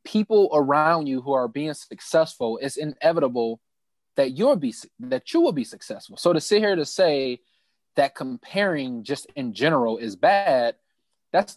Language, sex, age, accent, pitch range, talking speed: English, male, 20-39, American, 135-195 Hz, 160 wpm